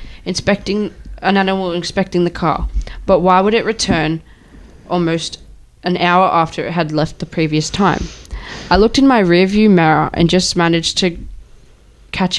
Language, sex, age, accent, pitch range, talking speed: English, female, 10-29, Australian, 165-185 Hz, 155 wpm